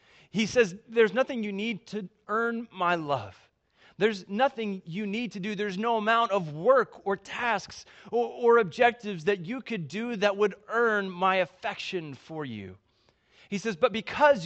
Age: 30-49